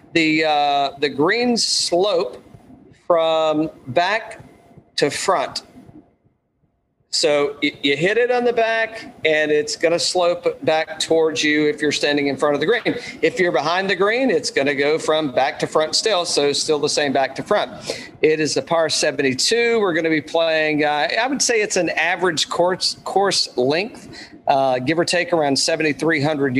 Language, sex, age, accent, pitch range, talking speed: English, male, 40-59, American, 140-175 Hz, 170 wpm